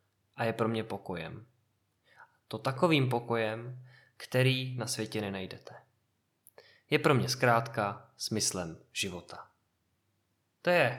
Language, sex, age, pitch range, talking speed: Czech, male, 20-39, 120-140 Hz, 110 wpm